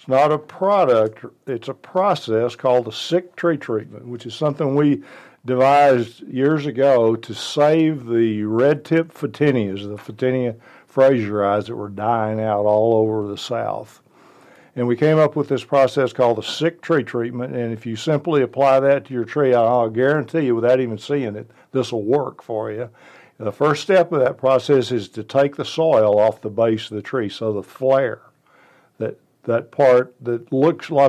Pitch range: 115-135 Hz